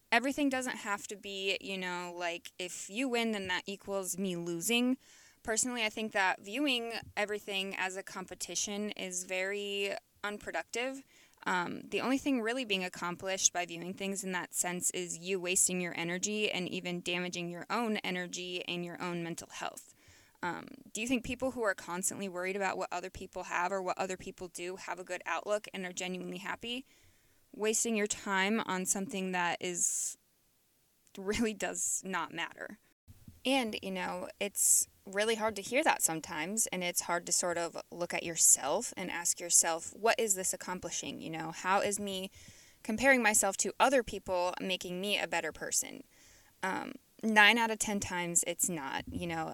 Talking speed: 175 wpm